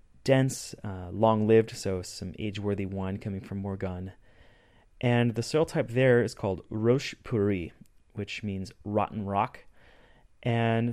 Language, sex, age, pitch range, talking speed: English, male, 30-49, 100-120 Hz, 130 wpm